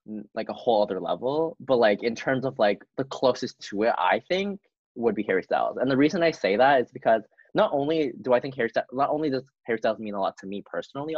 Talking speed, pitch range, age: 250 wpm, 105-140 Hz, 20-39